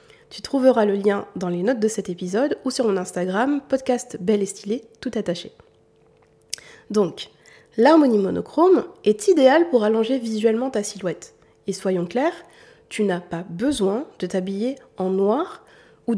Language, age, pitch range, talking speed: French, 20-39, 195-285 Hz, 155 wpm